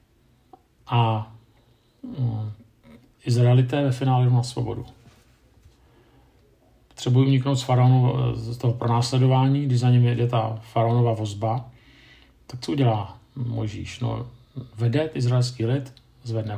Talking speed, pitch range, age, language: 110 wpm, 115-130 Hz, 50-69, Czech